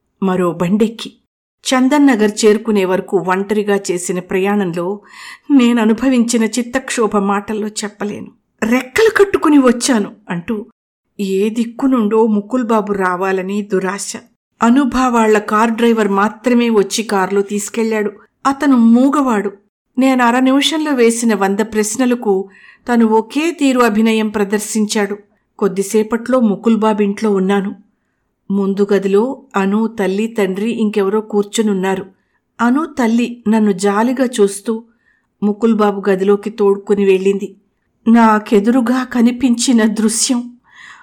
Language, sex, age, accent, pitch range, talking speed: Telugu, female, 60-79, native, 205-250 Hz, 90 wpm